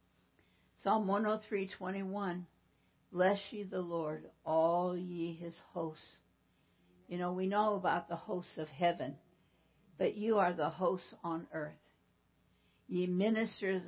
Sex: female